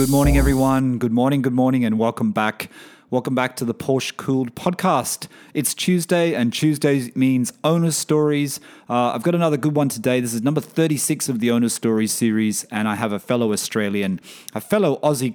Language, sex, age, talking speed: English, male, 30-49, 190 wpm